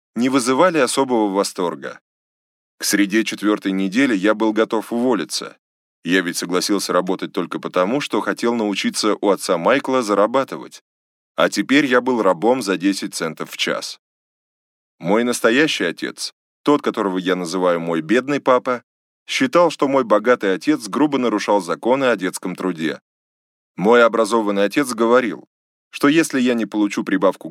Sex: male